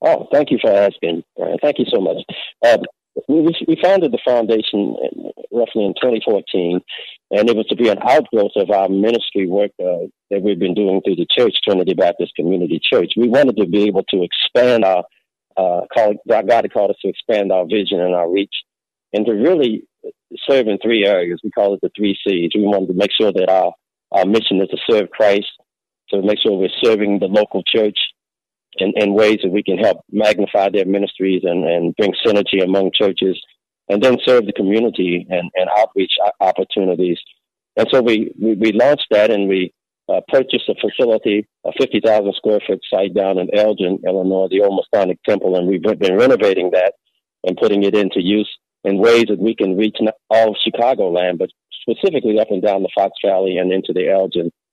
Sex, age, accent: male, 40-59, American